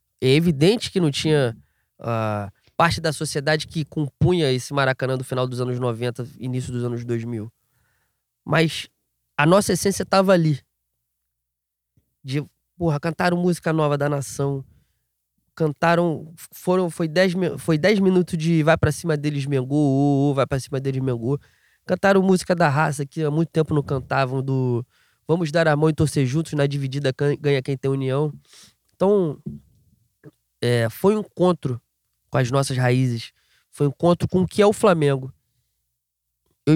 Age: 20-39